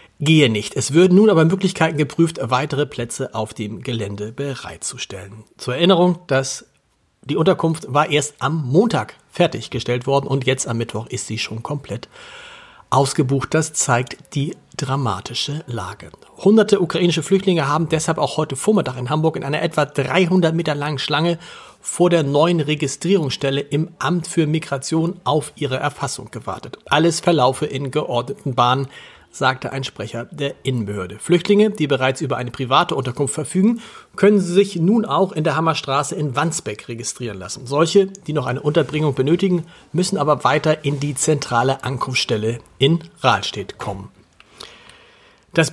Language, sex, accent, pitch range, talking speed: German, male, German, 130-170 Hz, 150 wpm